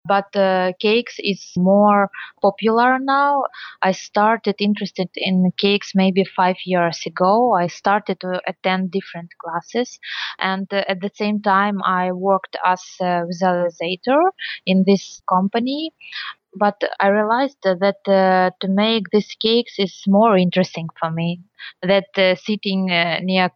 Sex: female